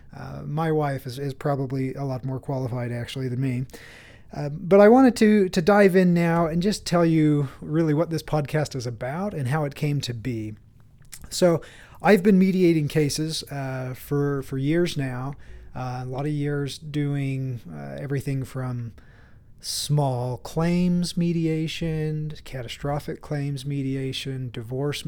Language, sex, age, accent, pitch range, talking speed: English, male, 30-49, American, 130-160 Hz, 155 wpm